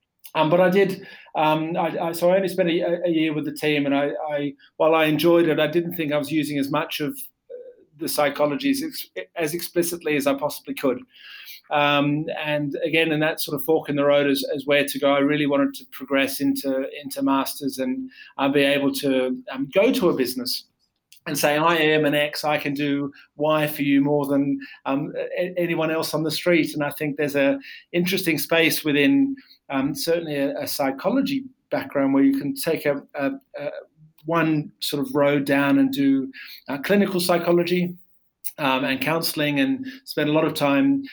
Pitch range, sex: 145-175 Hz, male